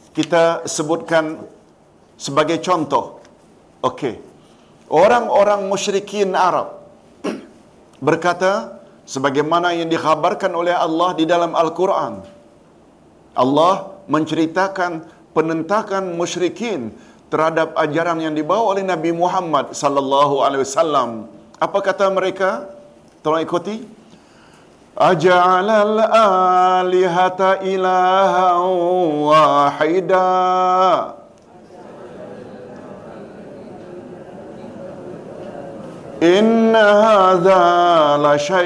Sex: male